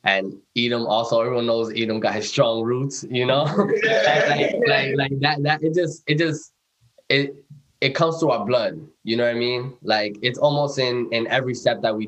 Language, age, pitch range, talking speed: English, 10-29, 105-125 Hz, 205 wpm